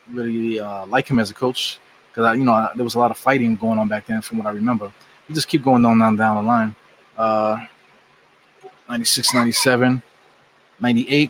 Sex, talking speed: male, 205 wpm